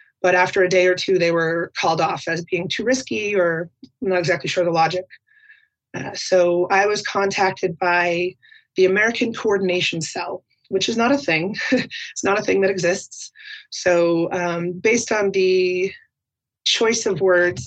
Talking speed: 165 wpm